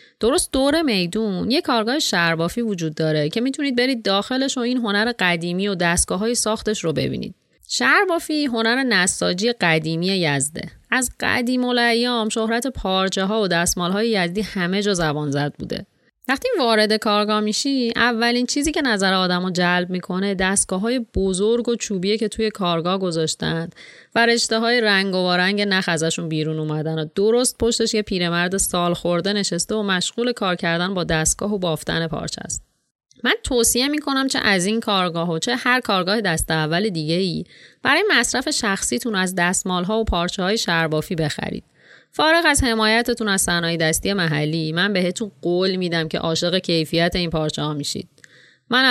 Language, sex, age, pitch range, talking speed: Persian, female, 30-49, 170-225 Hz, 160 wpm